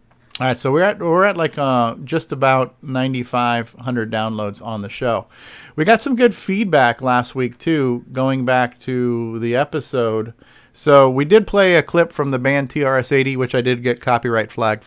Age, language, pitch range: 40-59, English, 115-130 Hz